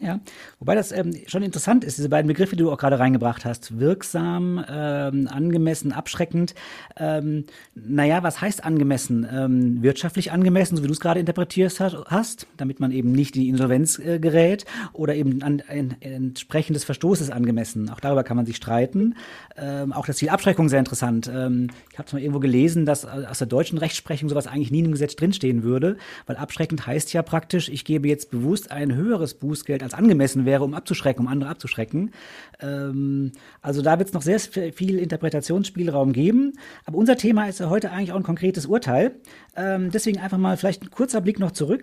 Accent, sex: German, male